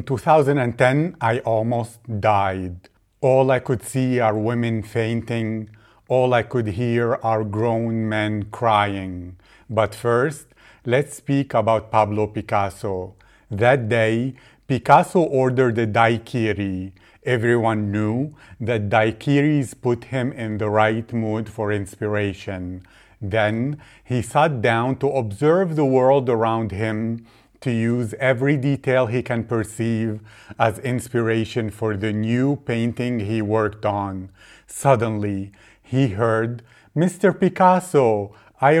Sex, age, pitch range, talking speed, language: male, 40-59, 110-130 Hz, 120 wpm, English